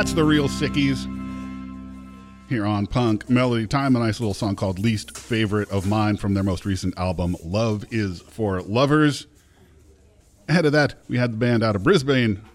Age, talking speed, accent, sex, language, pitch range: 40-59, 175 wpm, American, male, English, 95-135 Hz